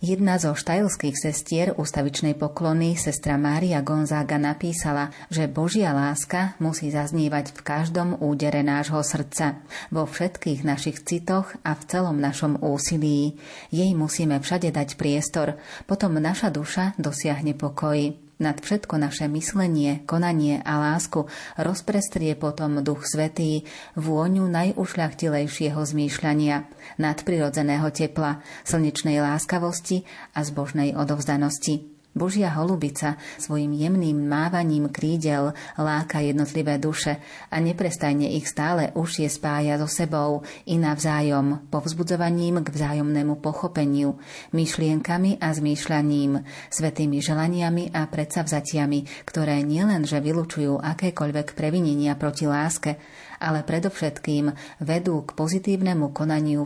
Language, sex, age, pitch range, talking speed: Slovak, female, 30-49, 145-165 Hz, 110 wpm